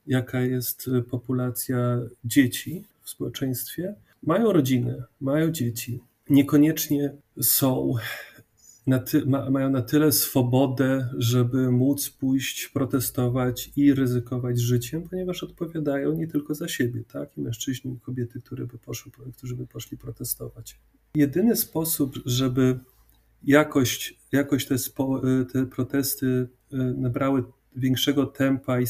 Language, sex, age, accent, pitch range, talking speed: Polish, male, 30-49, native, 125-140 Hz, 115 wpm